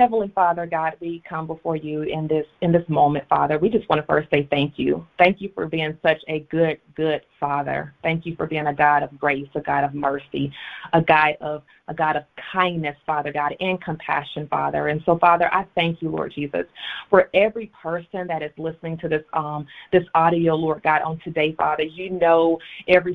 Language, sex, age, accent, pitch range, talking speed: English, female, 30-49, American, 160-195 Hz, 210 wpm